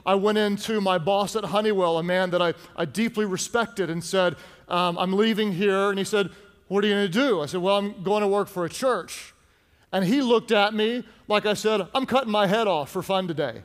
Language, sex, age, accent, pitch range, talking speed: English, male, 40-59, American, 170-215 Hz, 240 wpm